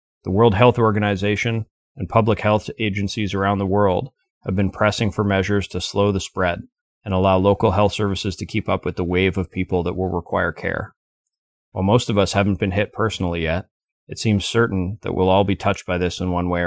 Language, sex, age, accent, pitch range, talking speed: English, male, 30-49, American, 90-105 Hz, 210 wpm